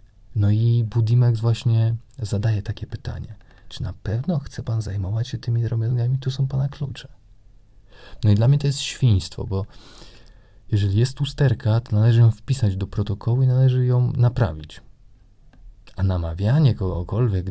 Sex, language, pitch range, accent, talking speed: male, Polish, 100-125 Hz, native, 150 wpm